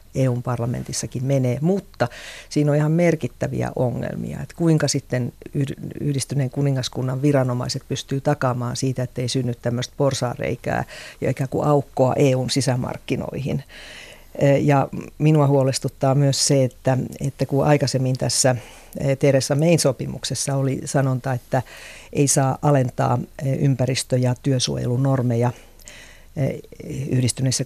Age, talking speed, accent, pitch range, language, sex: 50-69, 105 wpm, native, 125-145 Hz, Finnish, female